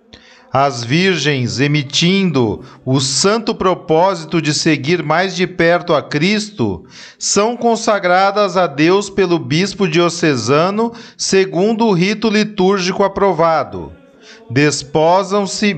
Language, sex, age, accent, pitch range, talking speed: Portuguese, male, 40-59, Brazilian, 155-205 Hz, 100 wpm